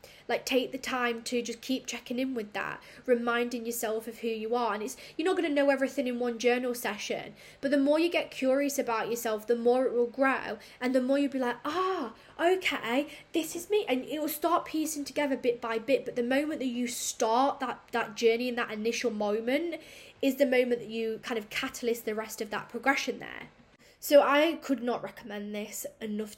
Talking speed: 220 wpm